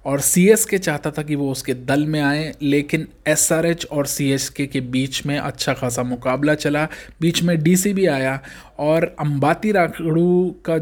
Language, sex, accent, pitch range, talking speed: Hindi, male, native, 130-160 Hz, 165 wpm